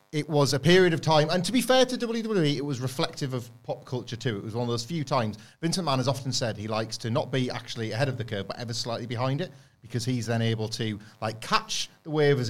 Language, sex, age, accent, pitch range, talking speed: English, male, 40-59, British, 105-140 Hz, 270 wpm